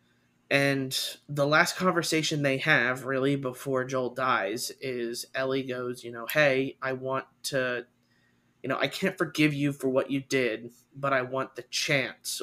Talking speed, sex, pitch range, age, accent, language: 165 wpm, male, 125-140 Hz, 30-49, American, English